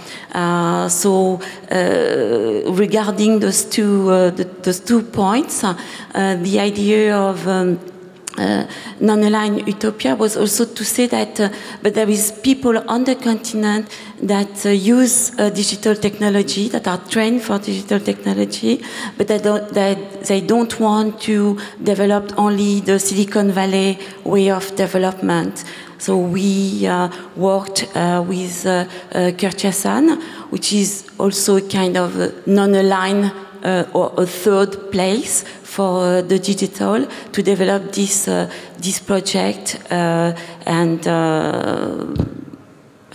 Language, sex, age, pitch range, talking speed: German, female, 40-59, 185-215 Hz, 135 wpm